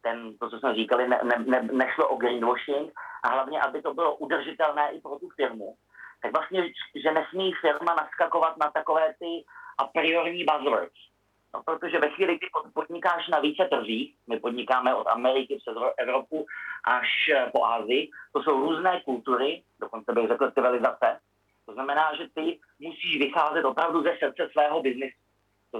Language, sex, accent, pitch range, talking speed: Czech, male, native, 120-160 Hz, 165 wpm